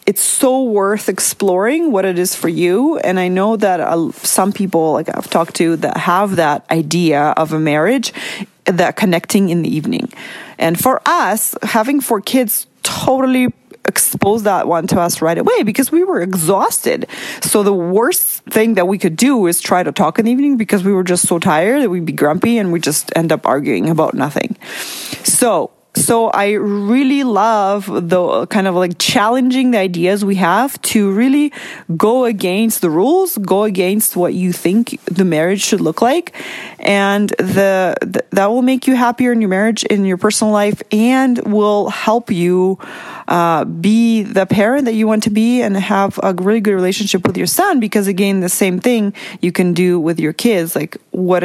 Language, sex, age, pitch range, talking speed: English, female, 30-49, 180-230 Hz, 190 wpm